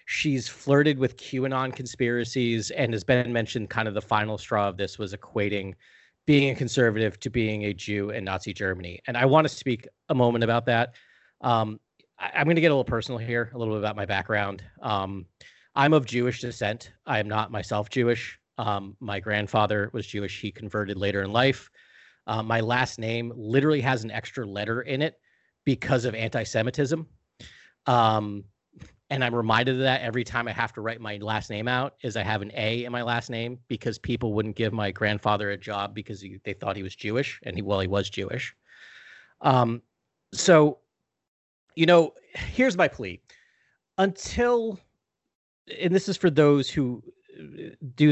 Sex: male